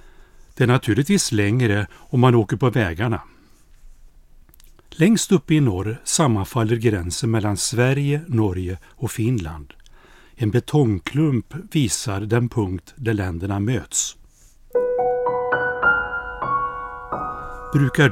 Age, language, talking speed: 60-79, Swedish, 95 wpm